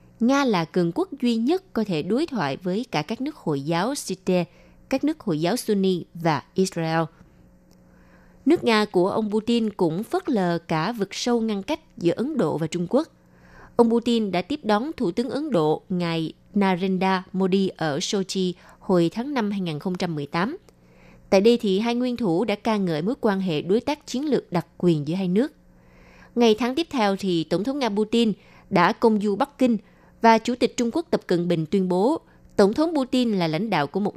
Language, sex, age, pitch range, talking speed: Vietnamese, female, 20-39, 170-235 Hz, 200 wpm